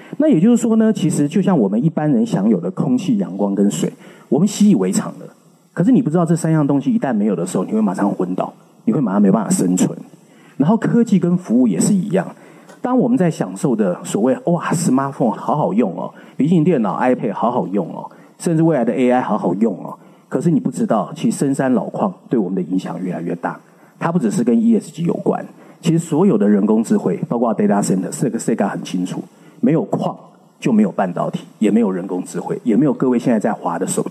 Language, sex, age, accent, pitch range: Chinese, male, 30-49, native, 160-220 Hz